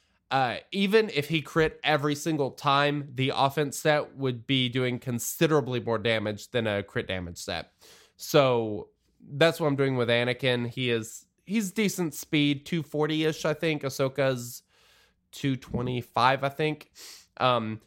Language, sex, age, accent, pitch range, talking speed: English, male, 20-39, American, 125-160 Hz, 145 wpm